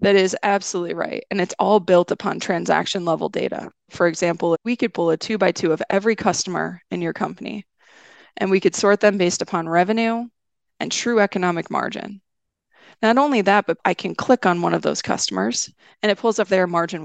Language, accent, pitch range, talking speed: English, American, 180-210 Hz, 200 wpm